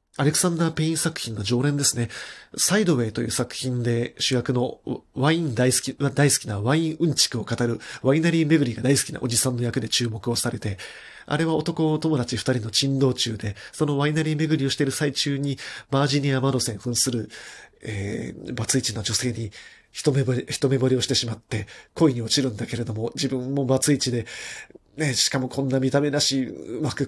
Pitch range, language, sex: 125-155 Hz, Japanese, male